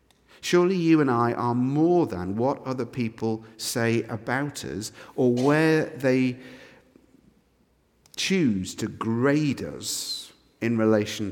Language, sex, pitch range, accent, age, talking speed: English, male, 110-155 Hz, British, 50-69, 115 wpm